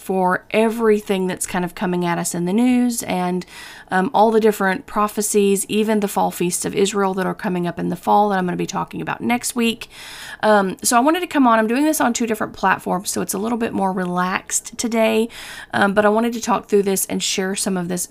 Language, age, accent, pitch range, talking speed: English, 40-59, American, 190-230 Hz, 245 wpm